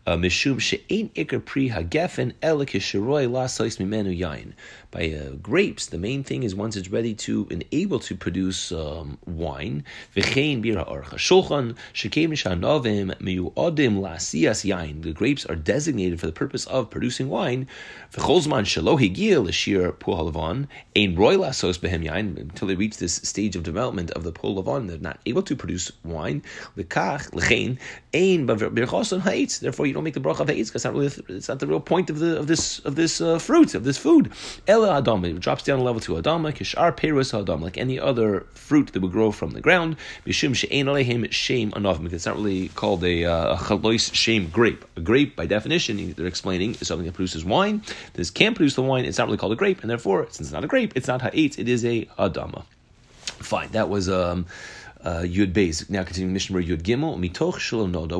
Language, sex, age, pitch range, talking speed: English, male, 30-49, 90-135 Hz, 155 wpm